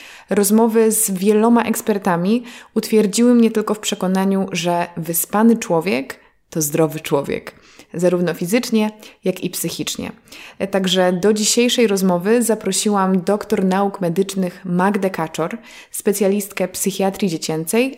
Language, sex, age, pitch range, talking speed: Polish, female, 20-39, 175-230 Hz, 110 wpm